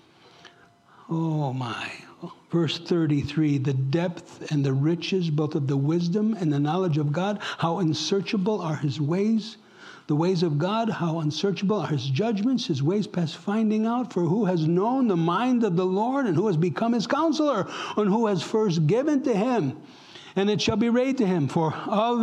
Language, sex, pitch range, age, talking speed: English, male, 160-215 Hz, 60-79, 185 wpm